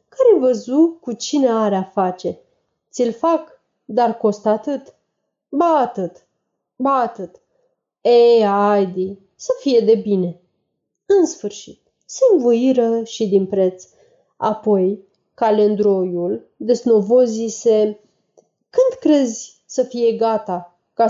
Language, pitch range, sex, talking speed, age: Romanian, 200-290 Hz, female, 110 wpm, 30-49